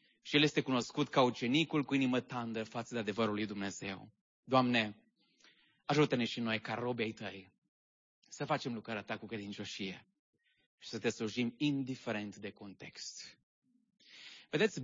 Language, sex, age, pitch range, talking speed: English, male, 30-49, 115-170 Hz, 140 wpm